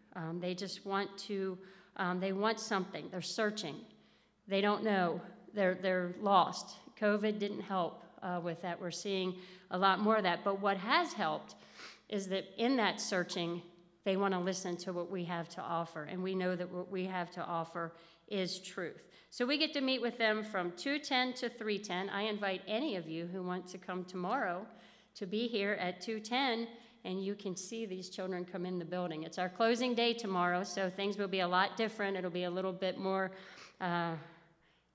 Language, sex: English, female